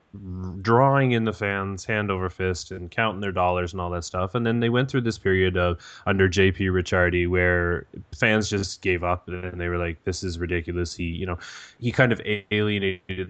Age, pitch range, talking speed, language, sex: 20-39, 95-115 Hz, 205 wpm, English, male